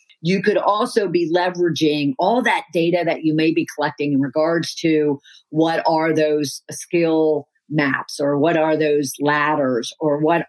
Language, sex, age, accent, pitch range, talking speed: English, female, 50-69, American, 145-170 Hz, 160 wpm